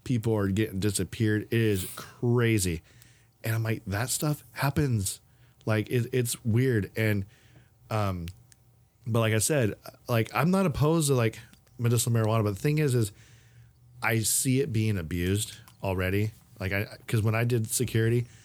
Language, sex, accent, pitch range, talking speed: English, male, American, 105-130 Hz, 155 wpm